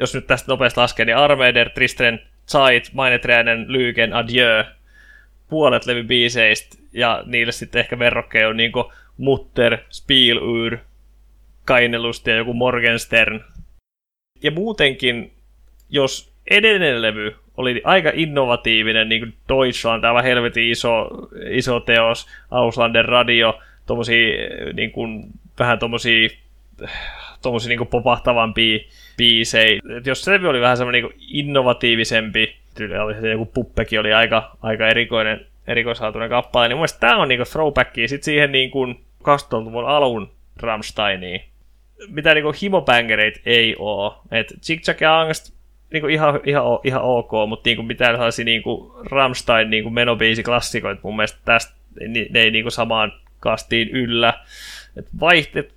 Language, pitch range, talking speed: Finnish, 115-125 Hz, 125 wpm